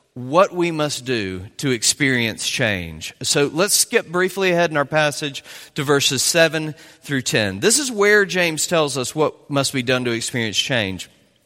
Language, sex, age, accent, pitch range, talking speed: English, male, 40-59, American, 130-190 Hz, 175 wpm